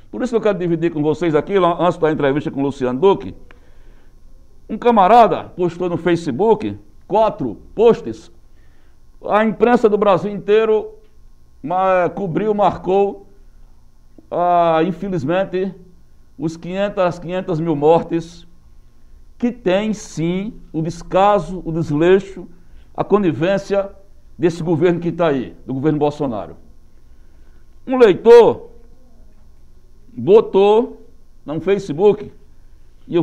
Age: 60-79